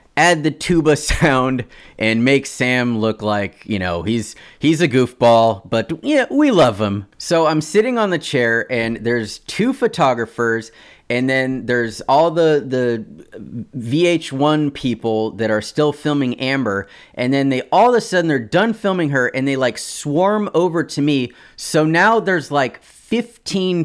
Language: English